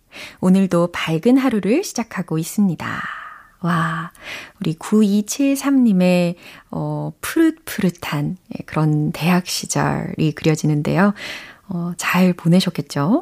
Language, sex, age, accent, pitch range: Korean, female, 30-49, native, 160-225 Hz